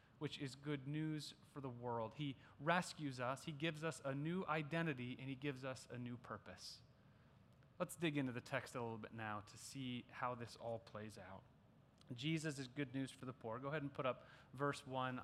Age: 30-49